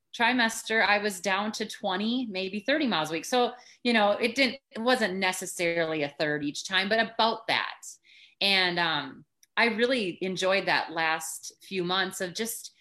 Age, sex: 30-49, female